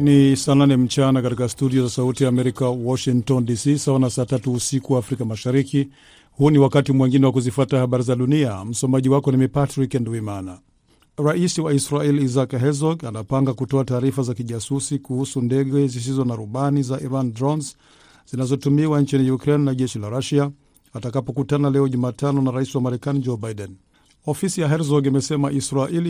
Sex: male